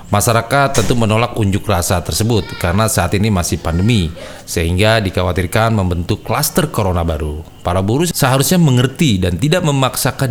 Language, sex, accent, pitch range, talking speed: Indonesian, male, native, 95-135 Hz, 140 wpm